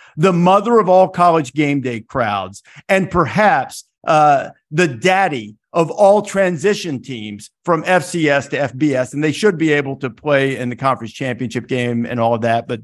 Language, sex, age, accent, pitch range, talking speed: English, male, 50-69, American, 125-180 Hz, 180 wpm